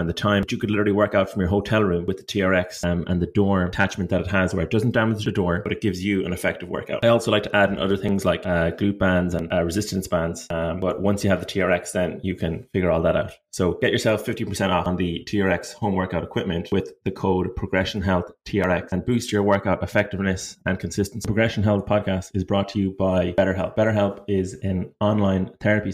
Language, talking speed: English, 245 wpm